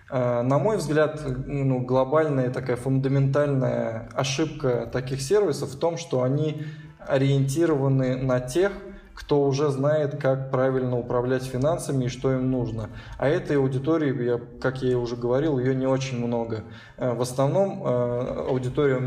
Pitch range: 125-140 Hz